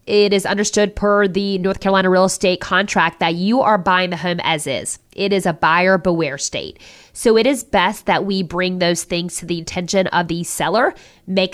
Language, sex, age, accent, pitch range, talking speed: English, female, 20-39, American, 175-210 Hz, 210 wpm